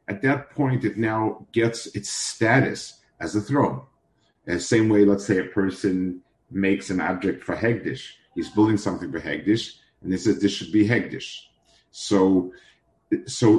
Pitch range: 100-120 Hz